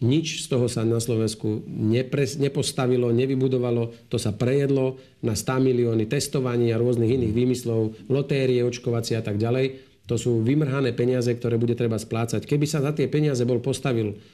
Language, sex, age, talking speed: Slovak, male, 40-59, 165 wpm